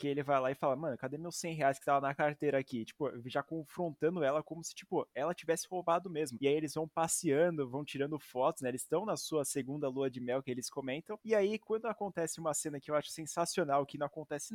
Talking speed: 250 wpm